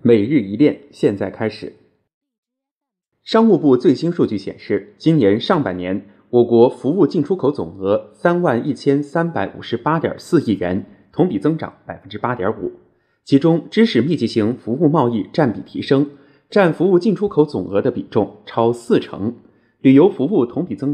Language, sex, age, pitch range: Chinese, male, 20-39, 125-200 Hz